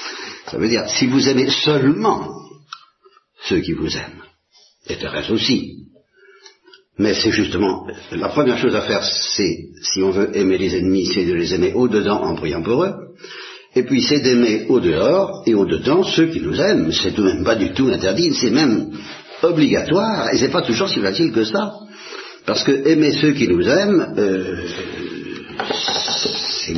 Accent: French